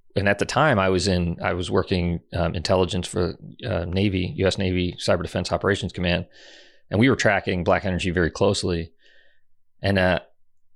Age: 40-59